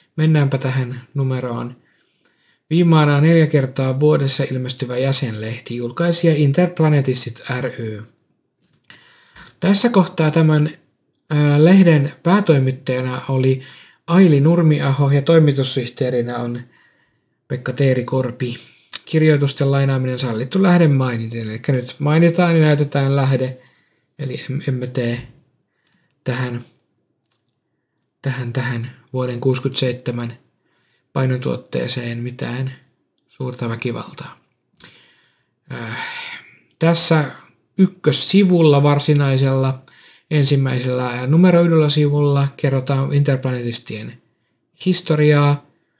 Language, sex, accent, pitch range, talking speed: Finnish, male, native, 125-155 Hz, 75 wpm